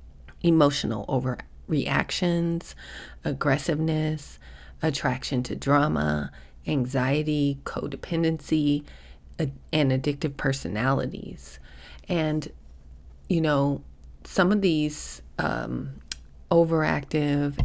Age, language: 30-49, English